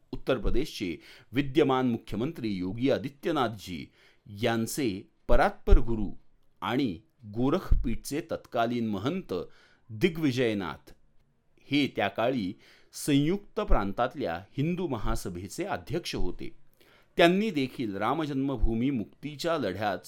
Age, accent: 40-59, native